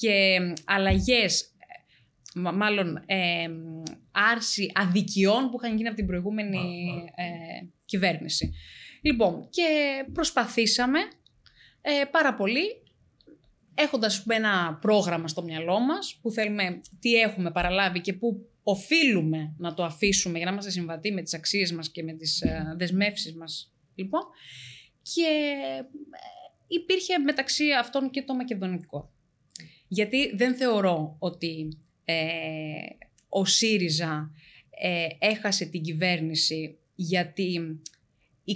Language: Greek